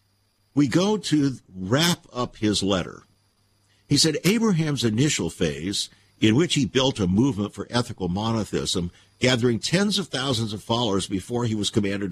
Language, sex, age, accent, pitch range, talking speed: English, male, 50-69, American, 100-140 Hz, 155 wpm